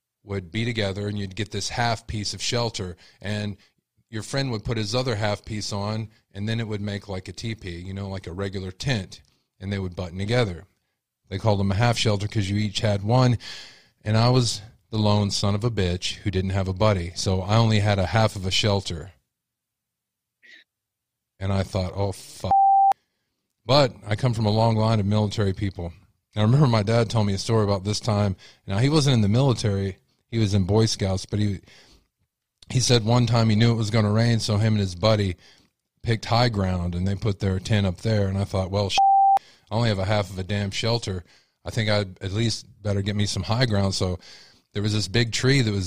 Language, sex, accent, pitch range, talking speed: English, male, American, 95-110 Hz, 225 wpm